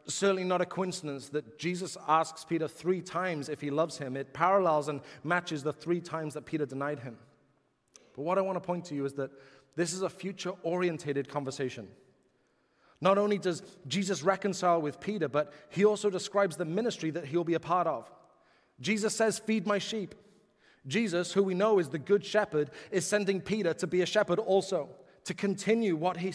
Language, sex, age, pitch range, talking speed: English, male, 30-49, 165-205 Hz, 195 wpm